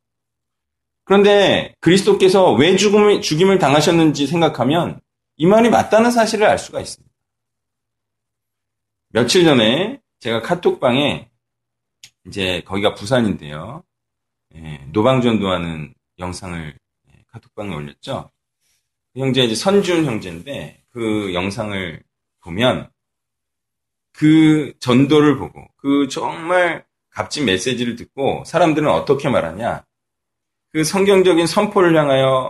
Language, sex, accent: Korean, male, native